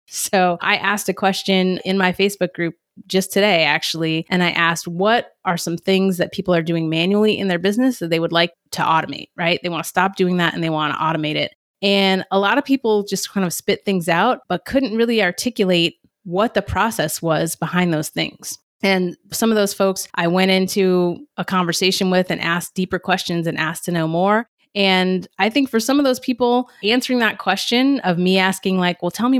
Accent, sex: American, female